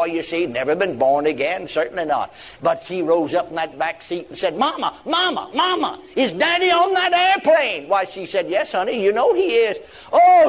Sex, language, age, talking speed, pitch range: male, English, 60-79, 205 wpm, 180-280 Hz